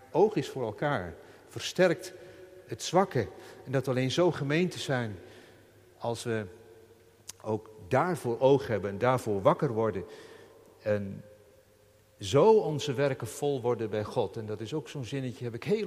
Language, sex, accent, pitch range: Dutch, male, Dutch, 110-140 Hz